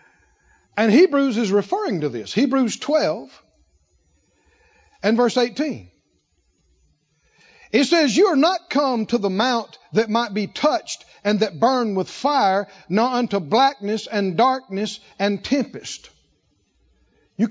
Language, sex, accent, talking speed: English, male, American, 125 wpm